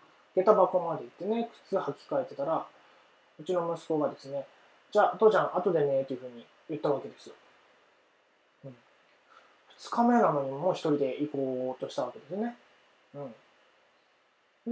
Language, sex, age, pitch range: Japanese, male, 20-39, 135-205 Hz